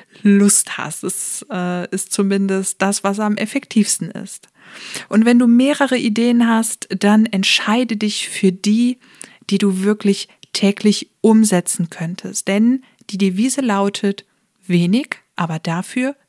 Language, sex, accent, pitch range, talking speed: German, female, German, 190-220 Hz, 135 wpm